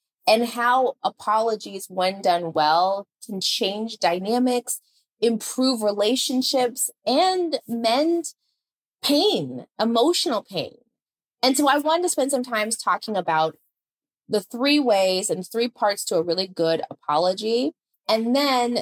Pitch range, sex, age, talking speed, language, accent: 190-255 Hz, female, 30-49, 125 wpm, English, American